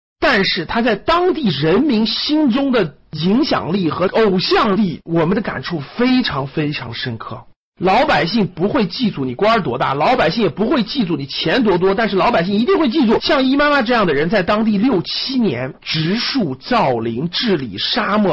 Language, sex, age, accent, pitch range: Chinese, male, 50-69, native, 140-215 Hz